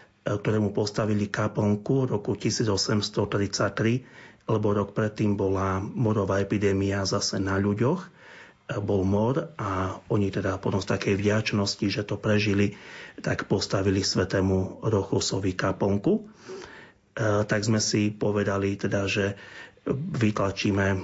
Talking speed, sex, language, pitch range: 110 wpm, male, Slovak, 100-105 Hz